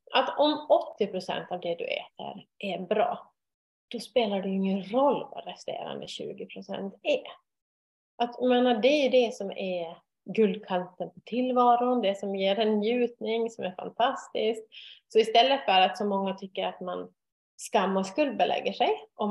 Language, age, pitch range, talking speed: Swedish, 30-49, 185-245 Hz, 160 wpm